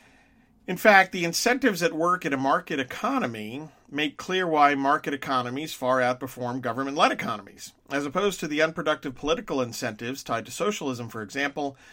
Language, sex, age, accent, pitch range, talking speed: English, male, 50-69, American, 125-160 Hz, 155 wpm